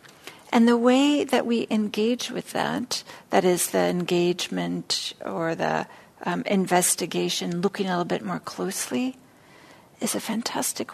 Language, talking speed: English, 135 wpm